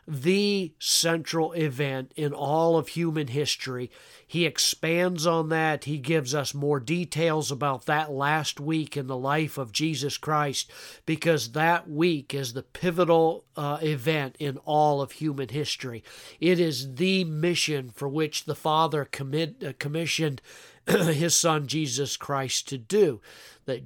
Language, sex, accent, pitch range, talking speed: English, male, American, 135-165 Hz, 145 wpm